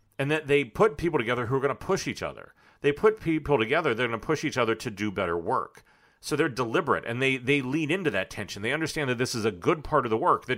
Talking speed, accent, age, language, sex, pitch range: 280 wpm, American, 40-59, English, male, 120-160 Hz